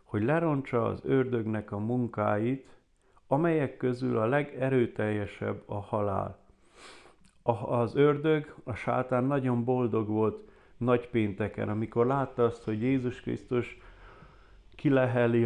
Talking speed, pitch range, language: 105 wpm, 105-130 Hz, Hungarian